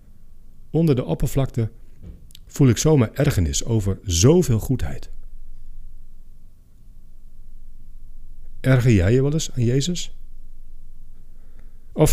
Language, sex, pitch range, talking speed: Dutch, male, 90-130 Hz, 90 wpm